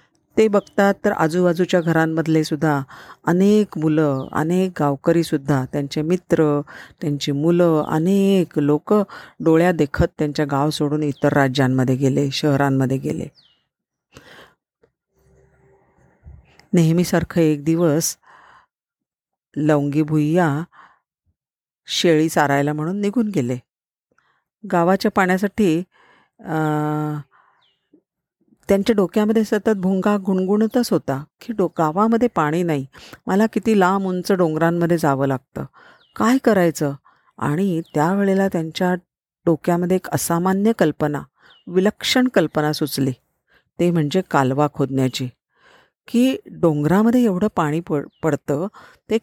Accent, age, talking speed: native, 50-69, 95 wpm